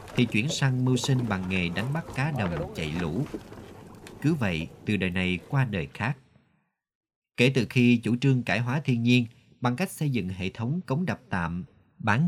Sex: male